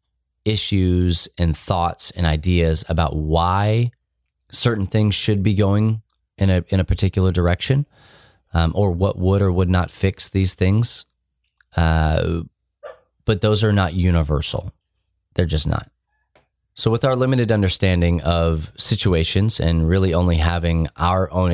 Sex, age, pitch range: male, 20-39, 80-100 Hz